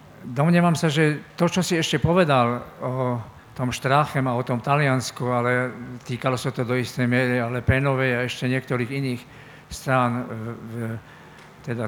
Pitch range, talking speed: 125-155 Hz, 160 wpm